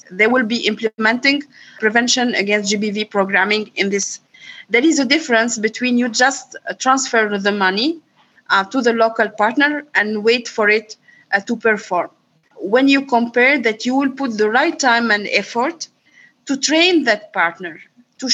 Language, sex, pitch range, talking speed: English, female, 215-265 Hz, 160 wpm